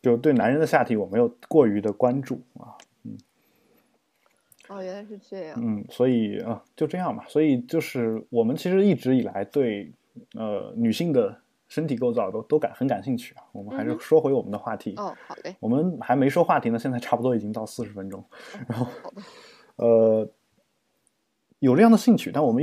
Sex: male